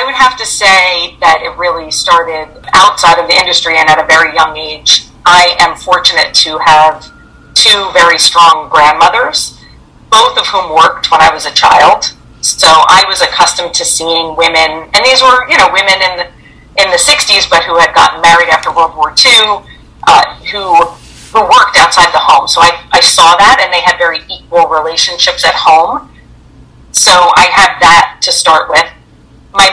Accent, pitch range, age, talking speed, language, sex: American, 155-195 Hz, 40-59, 185 wpm, English, female